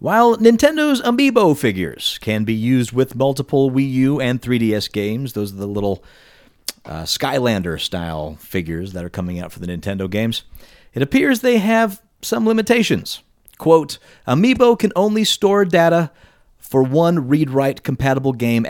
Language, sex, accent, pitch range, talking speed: English, male, American, 105-160 Hz, 145 wpm